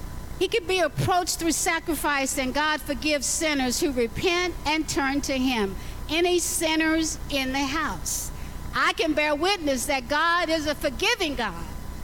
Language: English